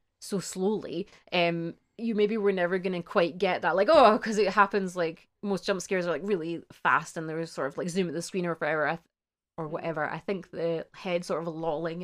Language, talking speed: English, 225 wpm